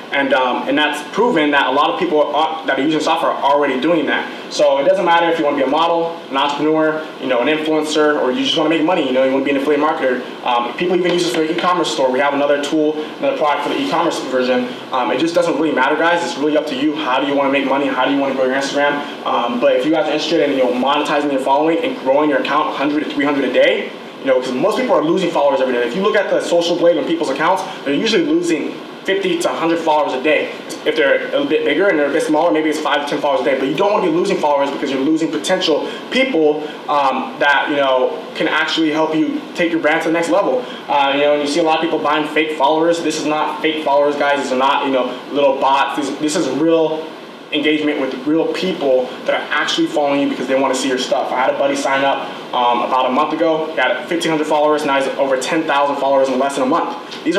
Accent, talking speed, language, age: American, 280 wpm, English, 20-39